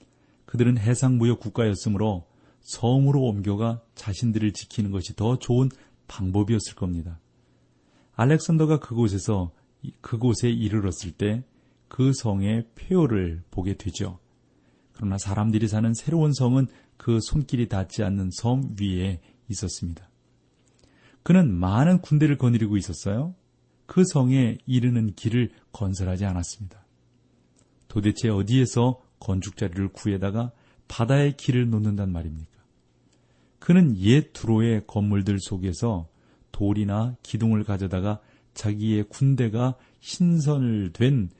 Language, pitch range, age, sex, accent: Korean, 95-125 Hz, 40-59, male, native